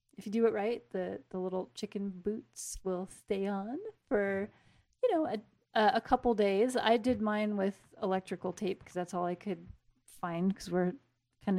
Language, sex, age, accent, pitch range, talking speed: English, female, 30-49, American, 170-210 Hz, 185 wpm